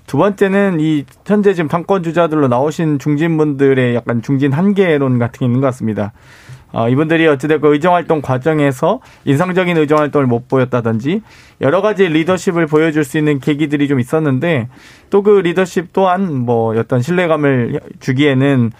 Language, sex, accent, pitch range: Korean, male, native, 125-155 Hz